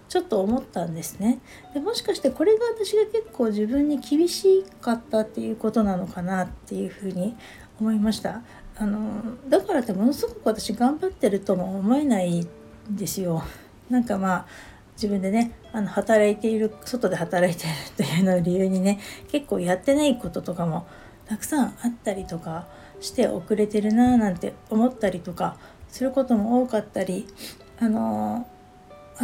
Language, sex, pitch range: Japanese, female, 190-245 Hz